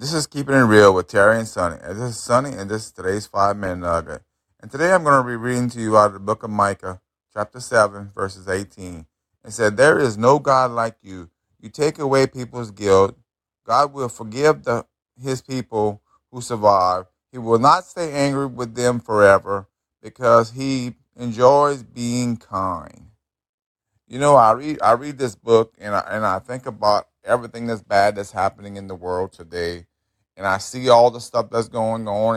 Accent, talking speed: American, 195 wpm